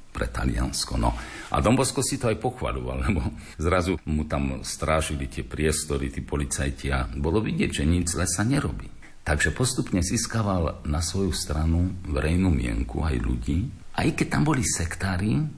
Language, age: Slovak, 50-69